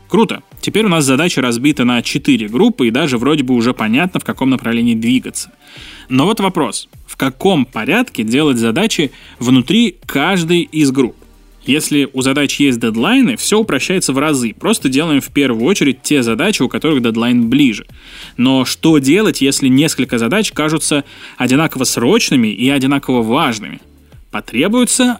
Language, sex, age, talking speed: Russian, male, 20-39, 150 wpm